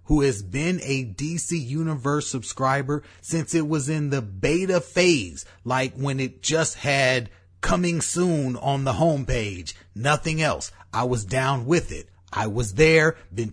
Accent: American